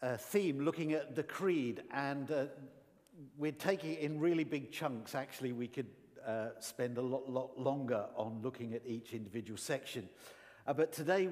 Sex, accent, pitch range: male, British, 125-160 Hz